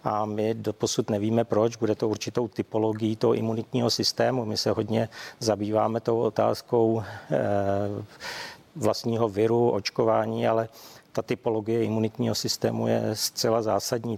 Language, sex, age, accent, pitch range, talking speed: Czech, male, 50-69, native, 105-115 Hz, 125 wpm